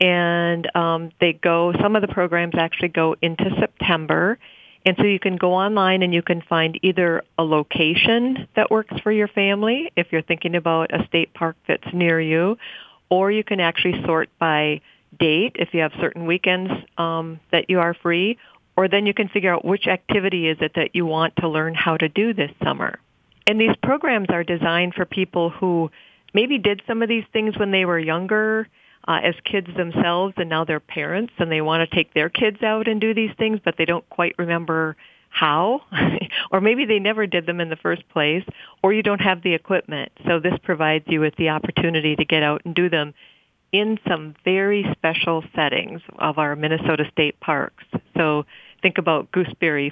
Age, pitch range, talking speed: 40-59, 165-195 Hz, 195 wpm